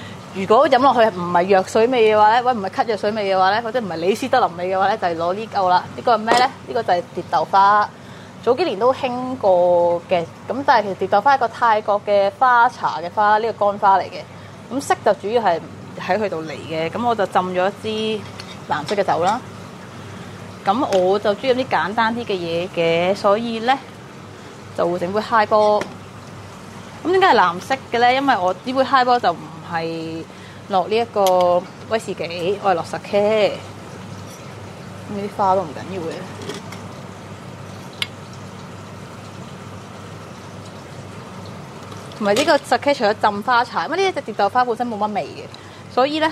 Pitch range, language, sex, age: 185-235 Hz, Chinese, female, 20-39